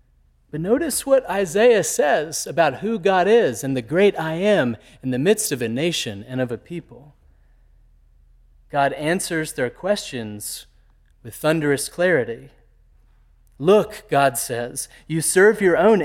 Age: 30-49